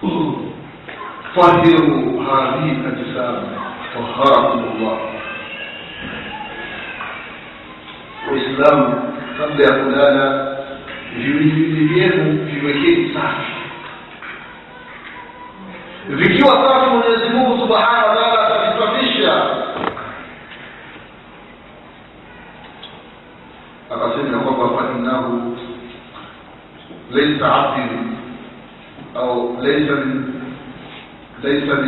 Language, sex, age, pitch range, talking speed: Swahili, male, 50-69, 135-195 Hz, 35 wpm